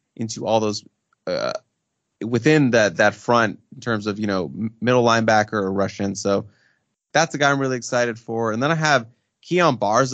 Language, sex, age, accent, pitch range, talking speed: English, male, 20-39, American, 105-125 Hz, 185 wpm